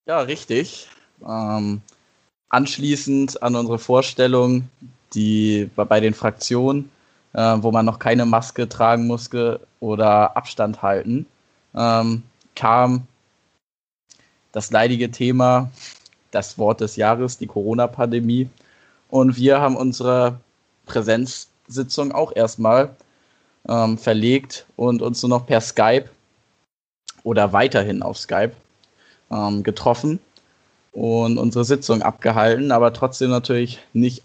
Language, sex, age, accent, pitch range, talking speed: German, male, 10-29, German, 110-125 Hz, 105 wpm